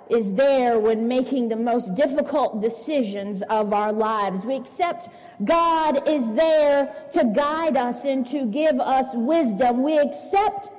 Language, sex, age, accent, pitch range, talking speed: English, female, 40-59, American, 215-270 Hz, 145 wpm